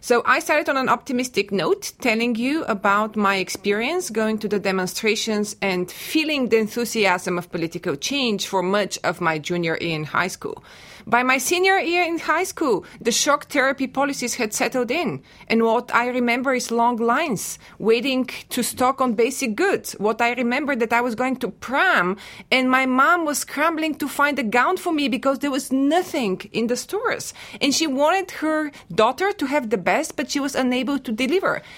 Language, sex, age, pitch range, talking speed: English, female, 30-49, 215-290 Hz, 190 wpm